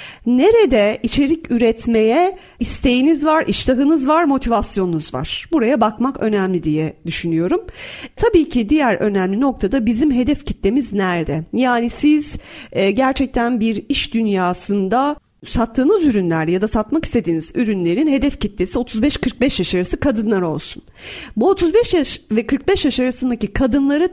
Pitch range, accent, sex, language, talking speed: 215-315 Hz, native, female, Turkish, 130 wpm